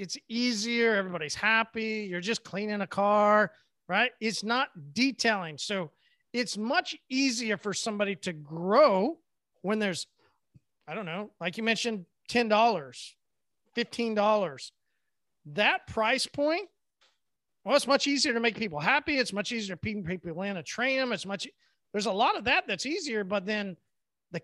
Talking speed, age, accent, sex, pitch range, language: 155 wpm, 40-59, American, male, 195-240 Hz, English